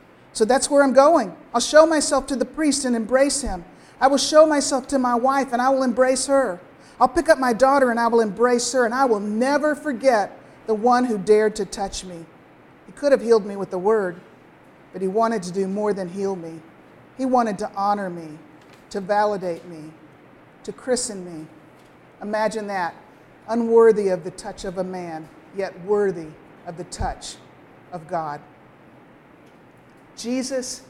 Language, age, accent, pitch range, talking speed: English, 50-69, American, 185-255 Hz, 180 wpm